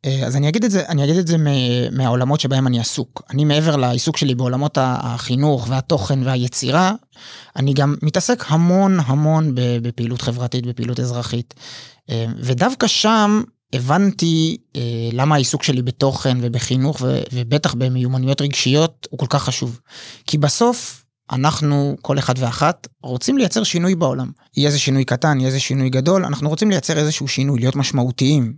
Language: Hebrew